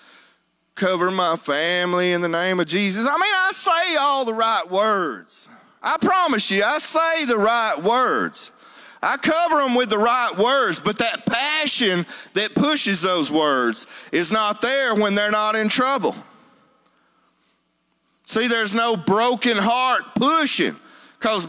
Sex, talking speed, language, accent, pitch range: male, 150 wpm, English, American, 170-260 Hz